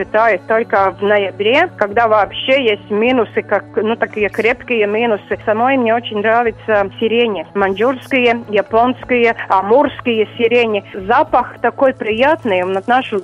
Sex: female